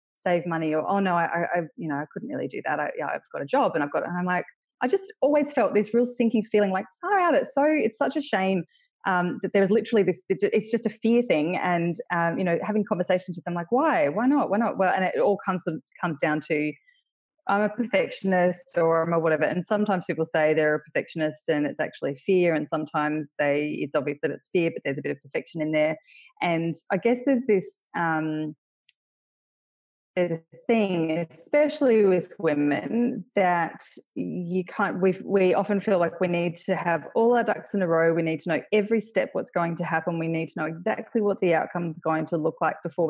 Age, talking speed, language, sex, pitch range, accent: 20-39, 225 wpm, English, female, 165-220 Hz, Australian